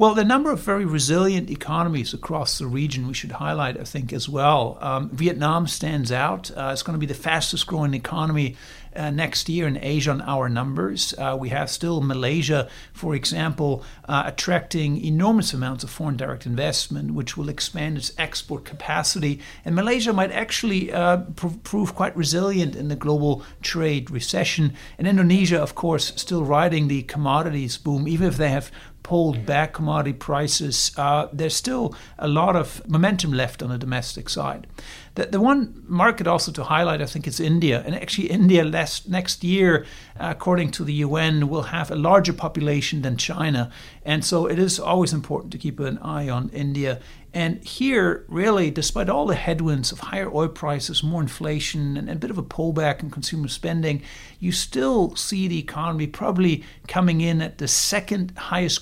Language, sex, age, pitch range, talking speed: English, male, 60-79, 140-170 Hz, 180 wpm